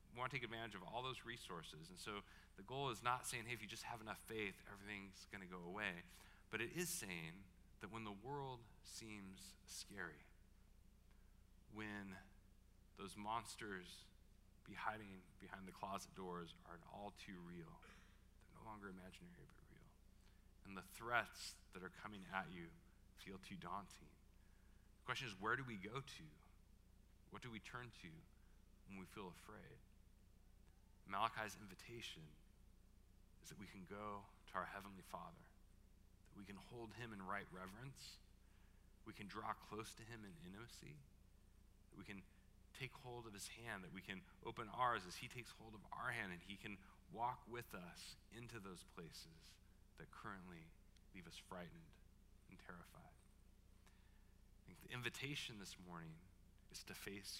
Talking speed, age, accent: 165 wpm, 40-59, American